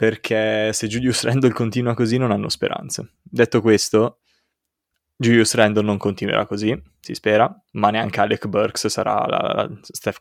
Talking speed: 155 wpm